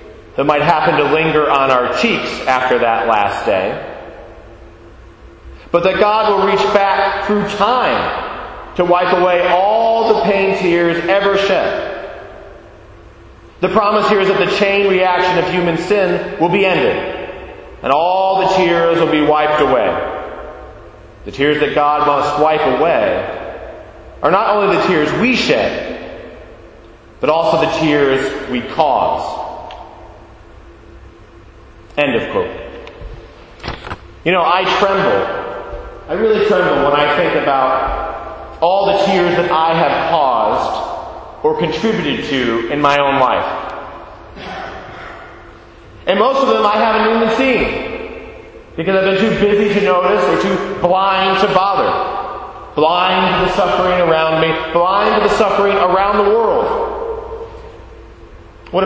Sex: male